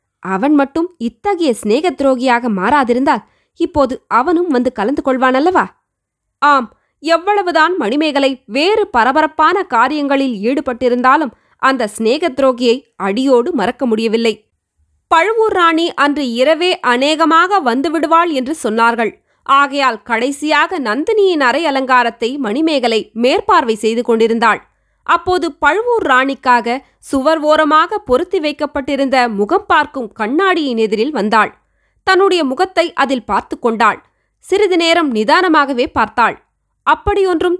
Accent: native